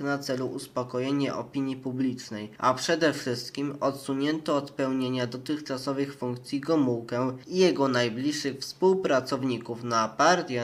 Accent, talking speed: native, 115 wpm